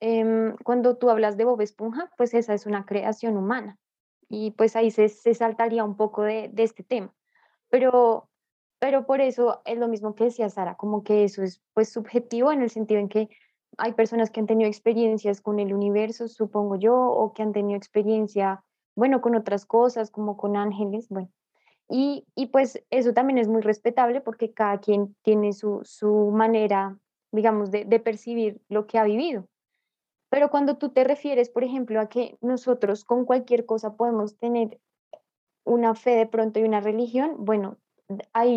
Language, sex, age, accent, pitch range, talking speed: English, female, 10-29, Colombian, 210-240 Hz, 180 wpm